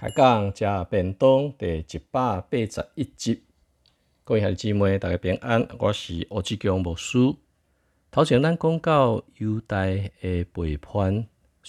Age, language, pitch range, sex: 50-69, Chinese, 85-115 Hz, male